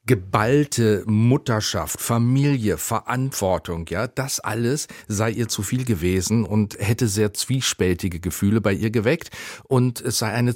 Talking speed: 135 wpm